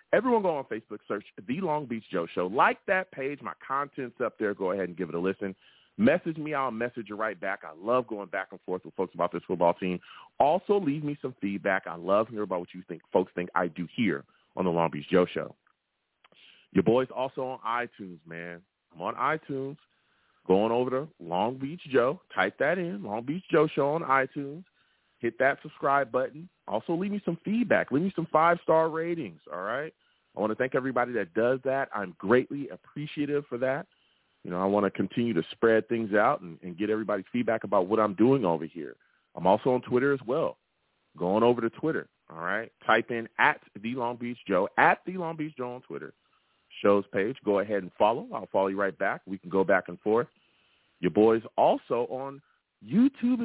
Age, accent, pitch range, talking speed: 30-49, American, 100-160 Hz, 210 wpm